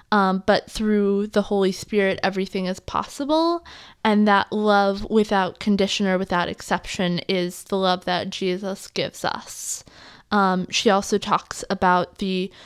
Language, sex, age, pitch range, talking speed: English, female, 20-39, 185-205 Hz, 140 wpm